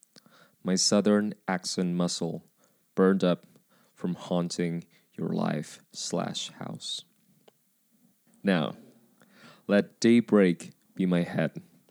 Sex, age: male, 20-39